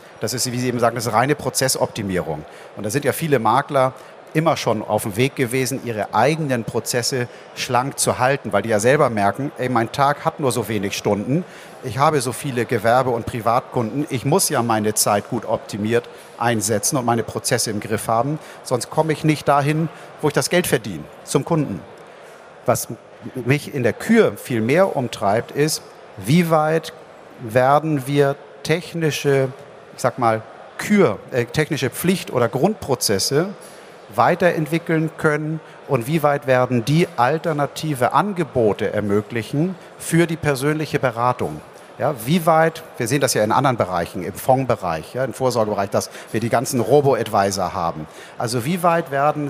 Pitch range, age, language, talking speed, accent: 115-155 Hz, 50-69, German, 165 wpm, German